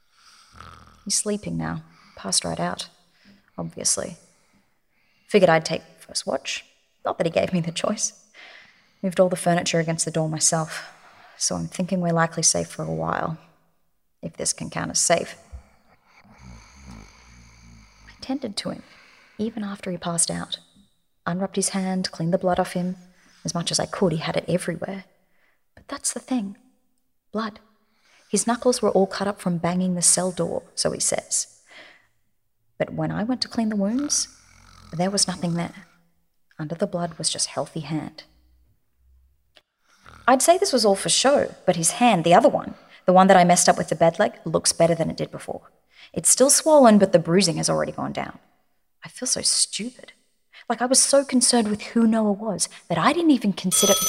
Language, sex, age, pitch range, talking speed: English, female, 30-49, 165-220 Hz, 180 wpm